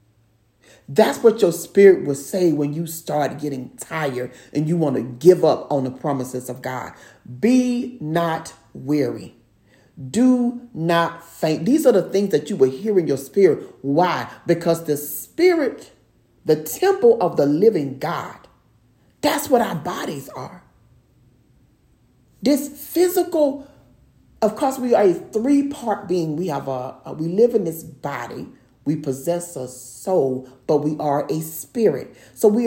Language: English